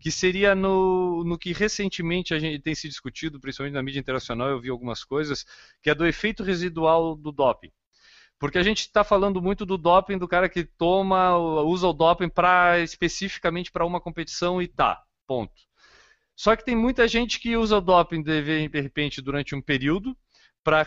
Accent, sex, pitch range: Brazilian, male, 150-185 Hz